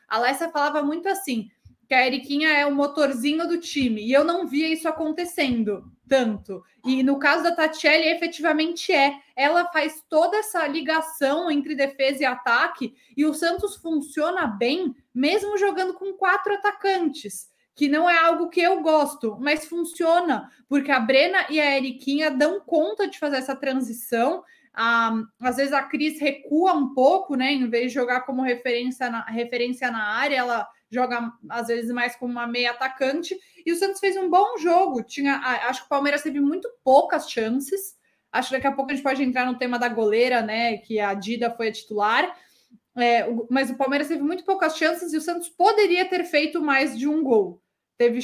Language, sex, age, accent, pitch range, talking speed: Portuguese, female, 20-39, Brazilian, 250-325 Hz, 185 wpm